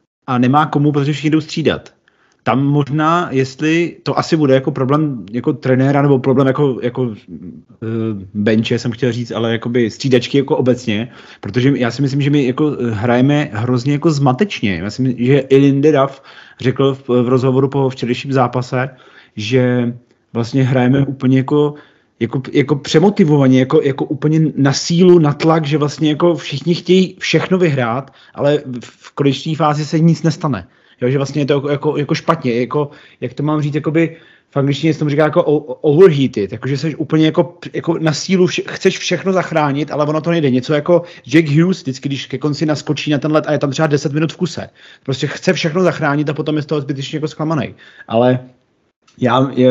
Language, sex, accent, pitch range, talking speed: Czech, male, native, 125-155 Hz, 190 wpm